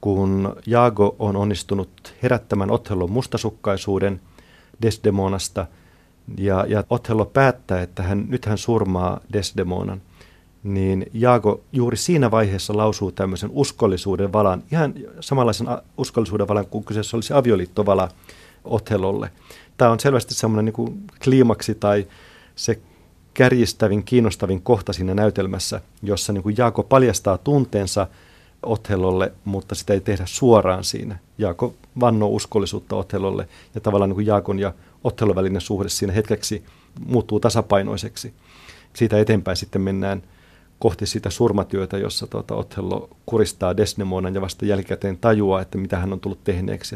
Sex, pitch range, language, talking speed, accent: male, 95-115 Hz, Finnish, 125 wpm, native